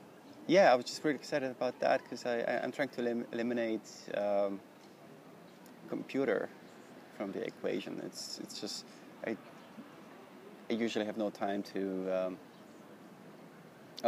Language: English